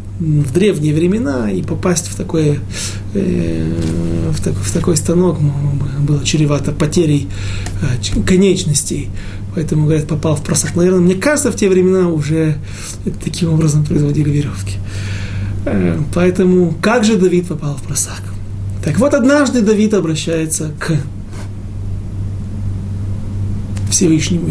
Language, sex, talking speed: Russian, male, 110 wpm